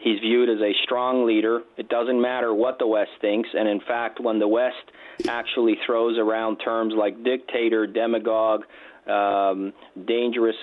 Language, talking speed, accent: English, 160 wpm, American